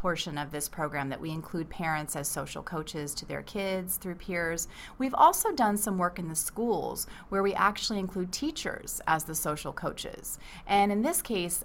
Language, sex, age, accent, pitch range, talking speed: English, female, 30-49, American, 160-195 Hz, 190 wpm